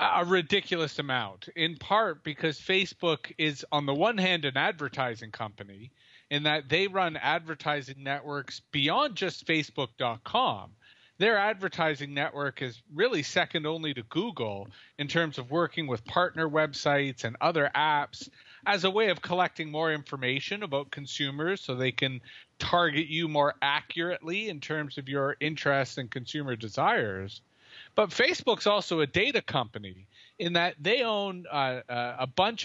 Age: 30-49